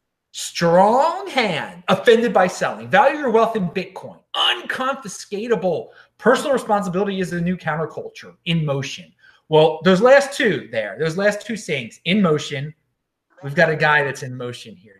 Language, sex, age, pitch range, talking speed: English, male, 30-49, 140-220 Hz, 150 wpm